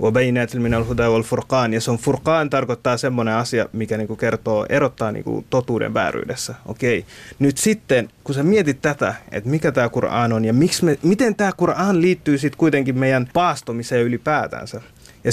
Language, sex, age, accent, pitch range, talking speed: Finnish, male, 30-49, native, 110-140 Hz, 155 wpm